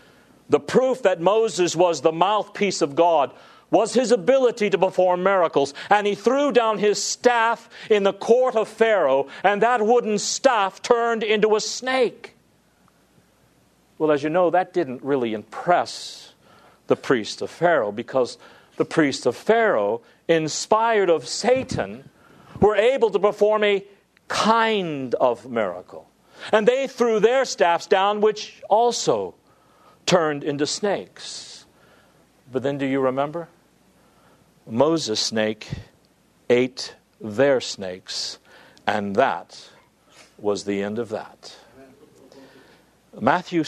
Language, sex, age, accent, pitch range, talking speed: English, male, 50-69, American, 145-220 Hz, 125 wpm